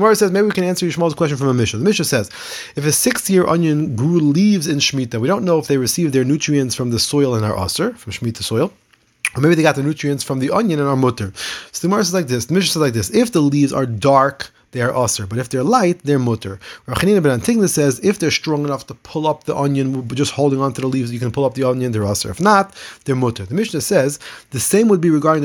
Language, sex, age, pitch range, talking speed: English, male, 30-49, 125-165 Hz, 270 wpm